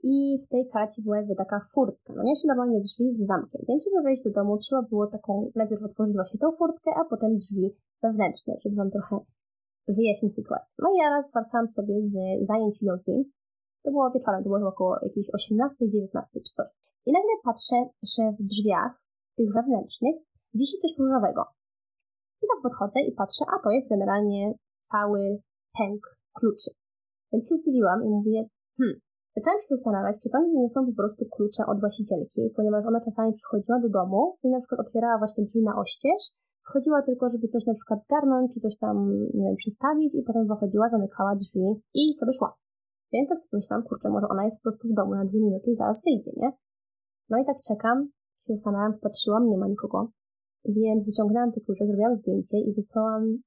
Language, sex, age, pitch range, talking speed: Polish, female, 20-39, 210-260 Hz, 190 wpm